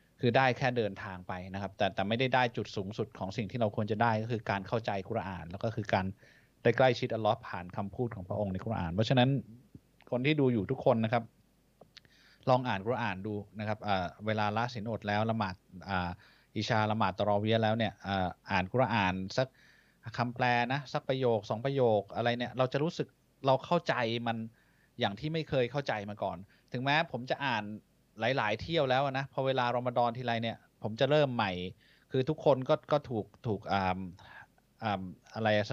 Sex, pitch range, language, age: male, 105-135 Hz, Thai, 20-39